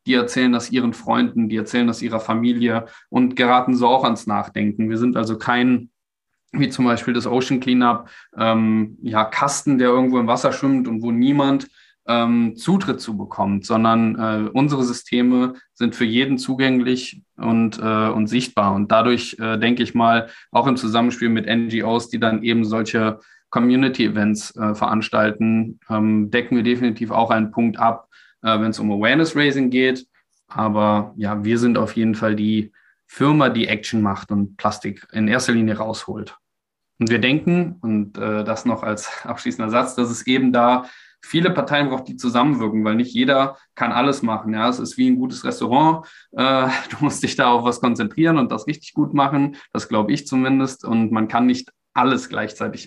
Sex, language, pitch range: male, German, 110-125 Hz